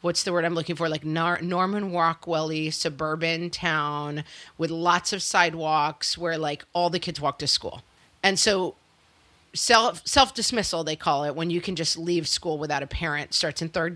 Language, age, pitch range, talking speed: English, 40-59, 155-195 Hz, 185 wpm